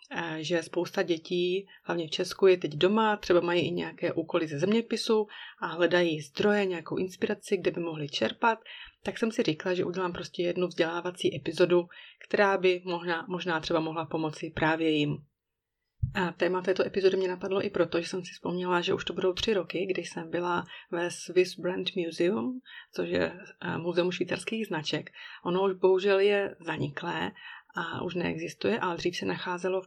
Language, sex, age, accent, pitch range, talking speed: Czech, female, 30-49, native, 170-190 Hz, 175 wpm